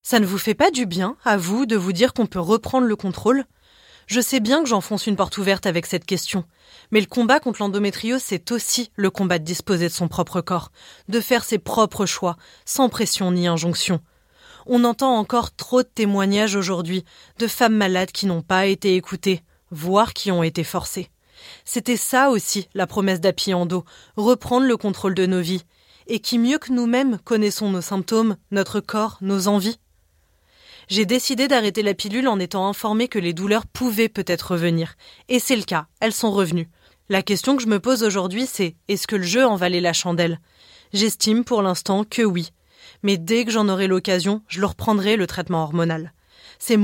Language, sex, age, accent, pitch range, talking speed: French, female, 20-39, French, 185-230 Hz, 195 wpm